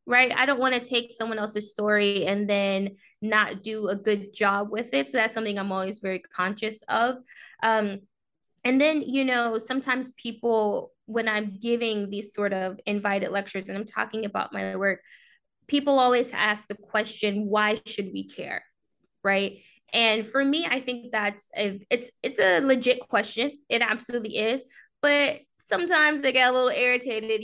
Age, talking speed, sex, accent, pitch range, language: 10-29, 175 wpm, female, American, 195-240 Hz, English